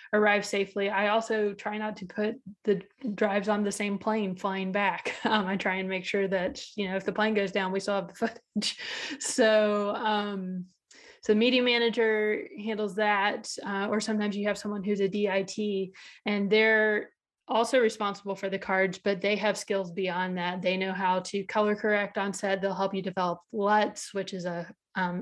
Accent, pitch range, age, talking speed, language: American, 195-220 Hz, 20-39, 195 wpm, English